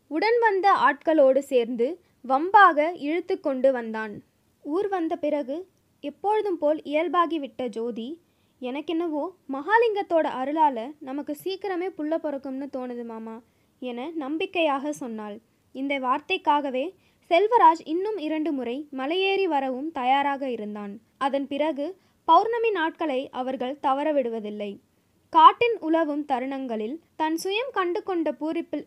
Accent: native